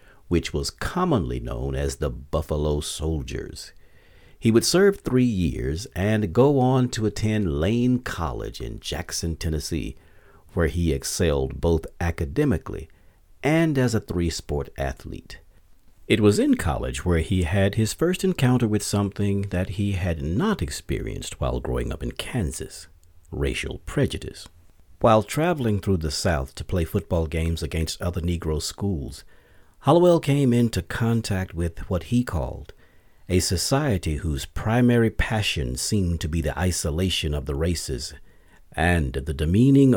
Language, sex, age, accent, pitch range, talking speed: English, male, 50-69, American, 80-105 Hz, 140 wpm